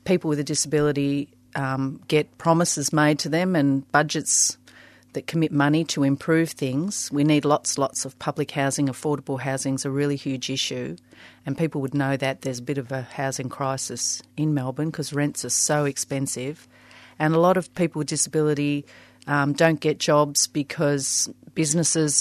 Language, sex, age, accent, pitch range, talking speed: English, female, 40-59, Australian, 140-155 Hz, 175 wpm